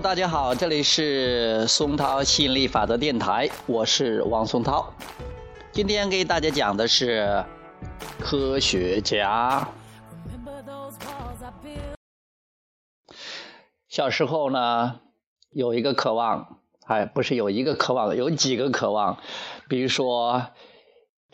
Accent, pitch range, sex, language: native, 125-185 Hz, male, Chinese